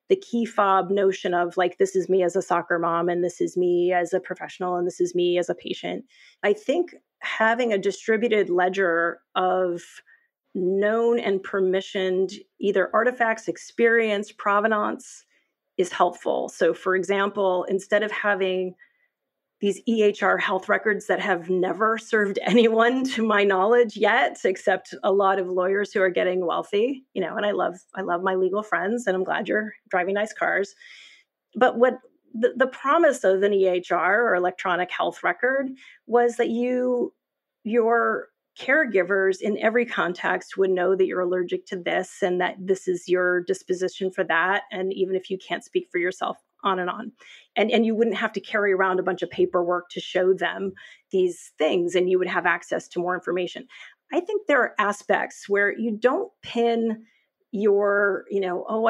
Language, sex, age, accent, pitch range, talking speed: English, female, 30-49, American, 180-225 Hz, 175 wpm